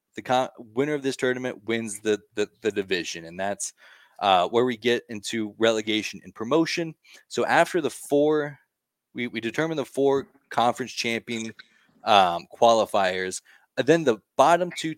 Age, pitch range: 20-39, 105-135 Hz